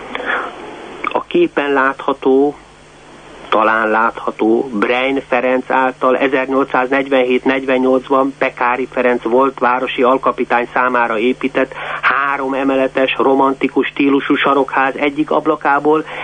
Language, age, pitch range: Hungarian, 50-69, 115-140 Hz